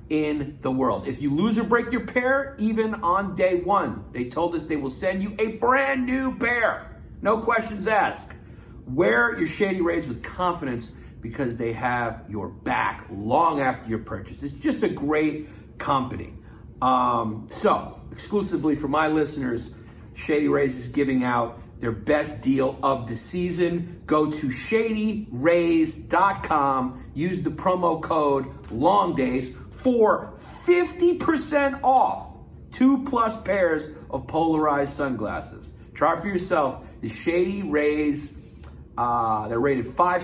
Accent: American